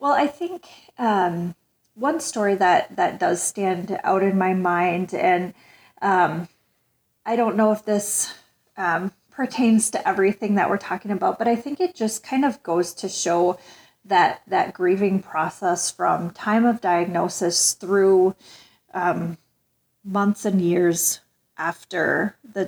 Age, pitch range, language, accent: 30-49, 185-215 Hz, English, American